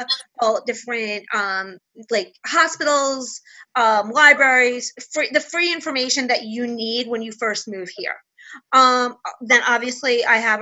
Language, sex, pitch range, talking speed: English, female, 225-275 Hz, 130 wpm